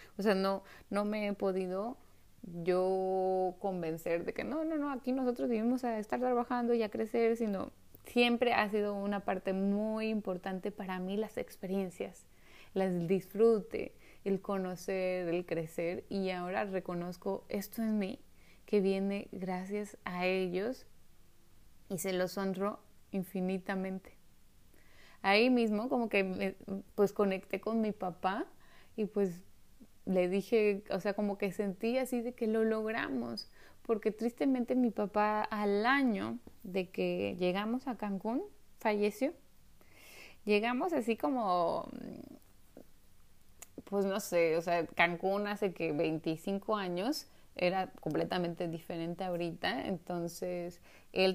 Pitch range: 180-215 Hz